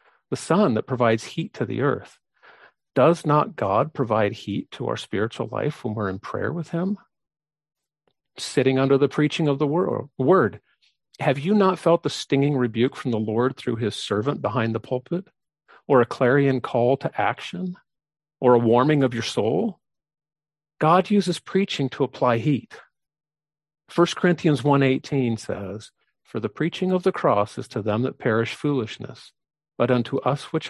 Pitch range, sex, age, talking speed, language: 115-150 Hz, male, 50-69, 165 wpm, English